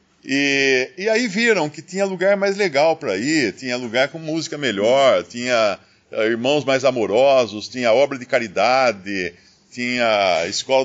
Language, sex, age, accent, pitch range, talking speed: Portuguese, male, 50-69, Brazilian, 115-160 Hz, 145 wpm